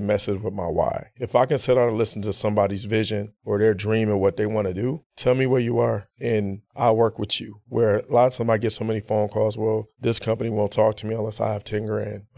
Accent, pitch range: American, 105-120 Hz